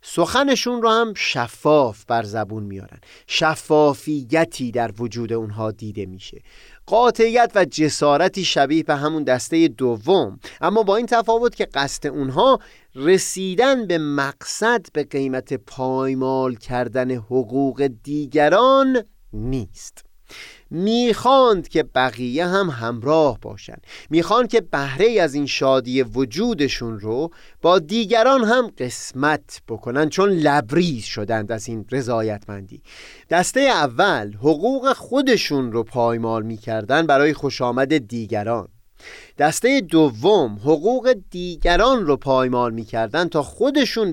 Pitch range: 120-180 Hz